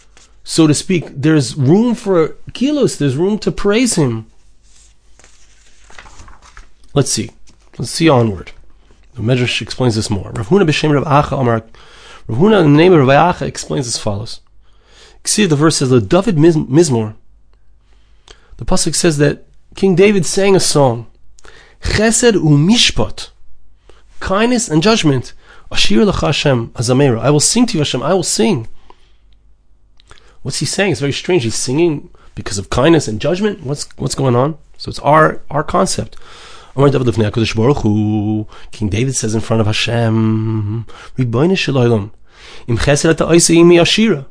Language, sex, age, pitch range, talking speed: English, male, 30-49, 120-180 Hz, 125 wpm